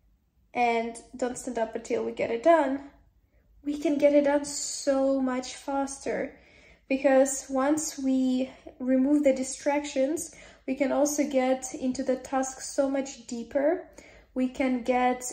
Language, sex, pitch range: English, female, 240-270 Hz